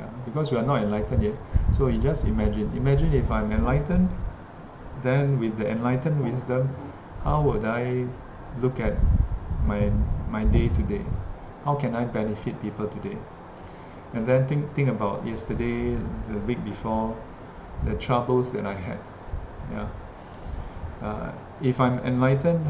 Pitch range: 100-125 Hz